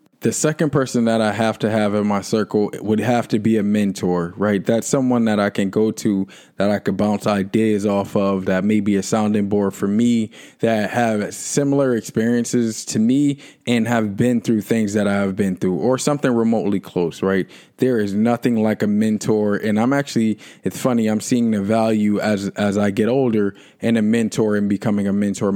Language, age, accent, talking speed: English, 20-39, American, 205 wpm